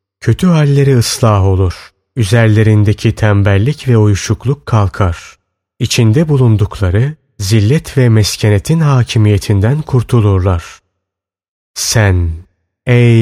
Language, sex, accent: Turkish, male, native